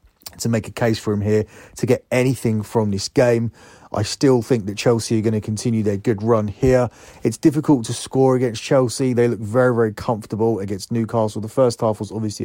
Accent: British